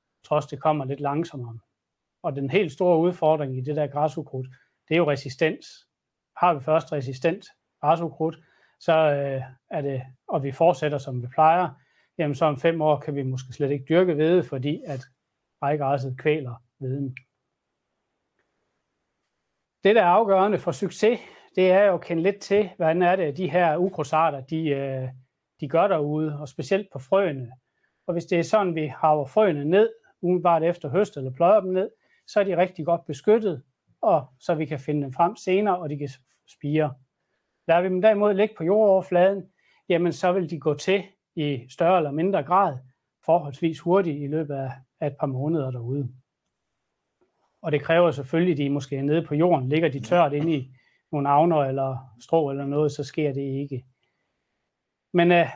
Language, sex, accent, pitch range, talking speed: Danish, male, native, 140-180 Hz, 180 wpm